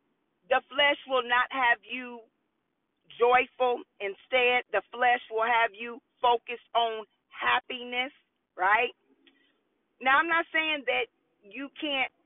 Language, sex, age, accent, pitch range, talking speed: English, female, 40-59, American, 250-330 Hz, 115 wpm